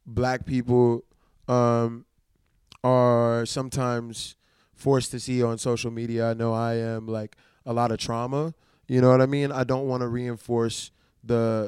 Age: 20-39